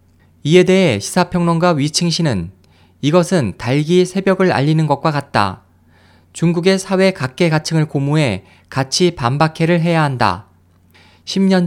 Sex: male